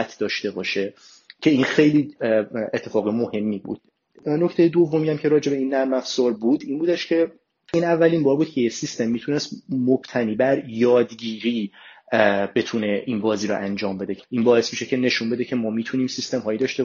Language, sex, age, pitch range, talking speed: Persian, male, 30-49, 115-140 Hz, 175 wpm